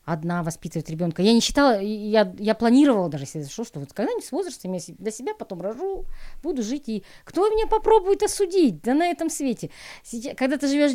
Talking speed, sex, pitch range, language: 205 wpm, female, 180-275 Hz, Russian